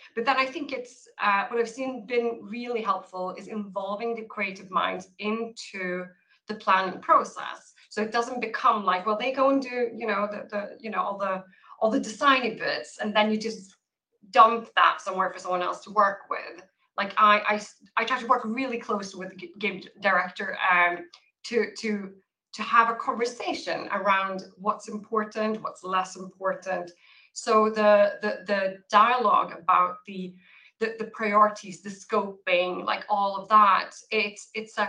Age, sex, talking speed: 20-39, female, 175 wpm